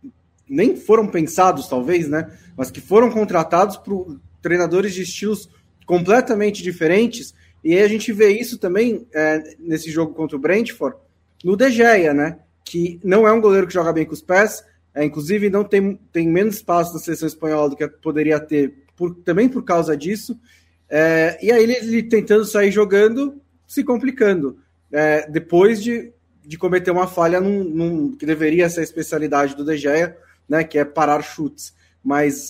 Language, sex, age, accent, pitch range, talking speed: Portuguese, male, 20-39, Brazilian, 155-210 Hz, 175 wpm